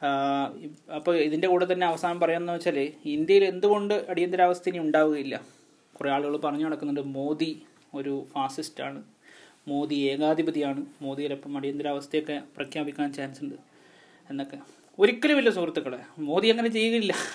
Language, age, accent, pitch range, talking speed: Malayalam, 30-49, native, 155-205 Hz, 115 wpm